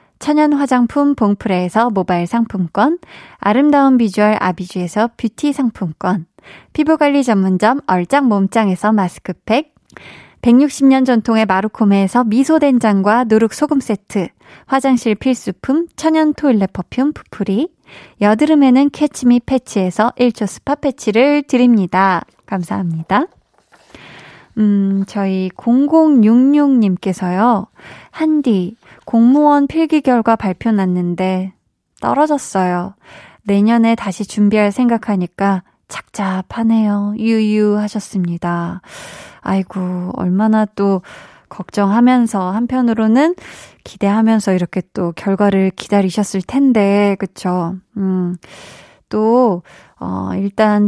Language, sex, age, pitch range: Korean, female, 20-39, 195-250 Hz